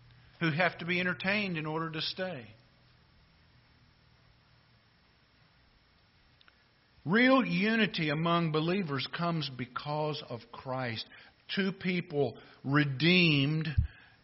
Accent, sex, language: American, male, English